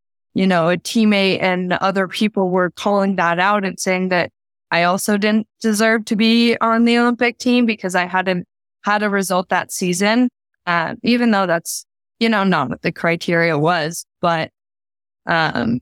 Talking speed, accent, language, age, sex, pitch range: 170 wpm, American, English, 20-39, female, 170-205 Hz